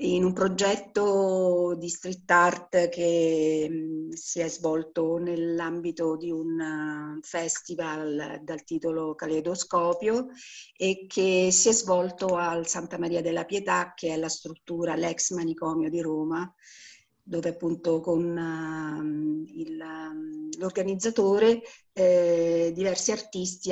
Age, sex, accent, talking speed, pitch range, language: 50-69, female, native, 105 wpm, 165-195 Hz, Italian